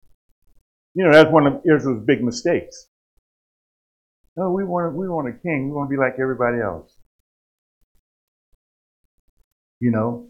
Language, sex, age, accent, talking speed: English, male, 50-69, American, 140 wpm